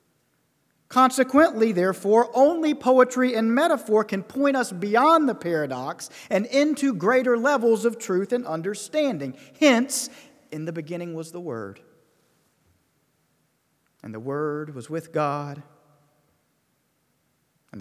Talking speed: 115 wpm